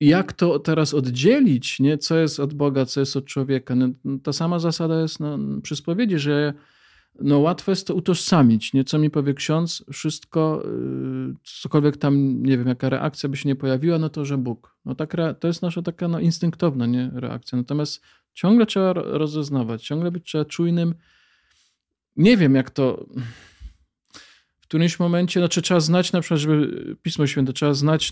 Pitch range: 130-160 Hz